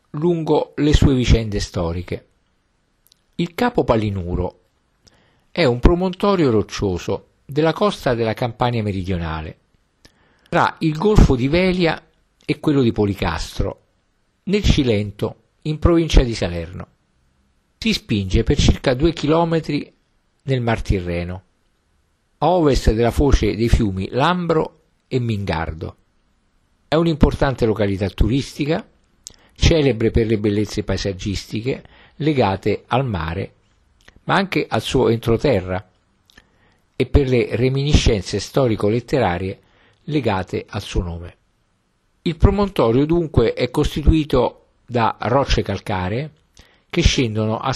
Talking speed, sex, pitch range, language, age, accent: 110 wpm, male, 95-150 Hz, Italian, 50-69, native